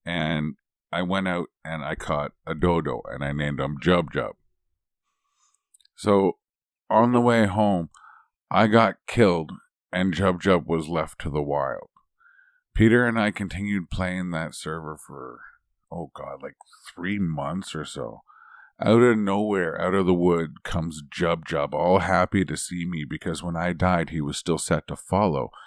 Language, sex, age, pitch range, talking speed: English, male, 50-69, 85-125 Hz, 160 wpm